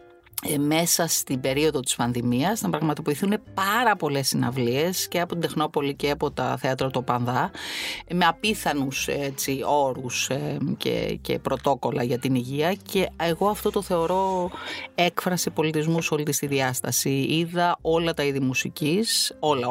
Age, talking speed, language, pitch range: 30-49, 145 wpm, Greek, 125-170 Hz